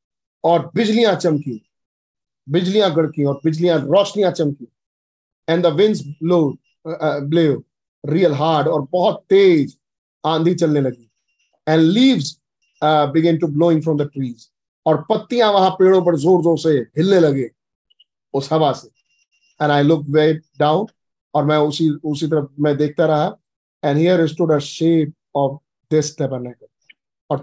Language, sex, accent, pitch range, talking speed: Hindi, male, native, 145-185 Hz, 105 wpm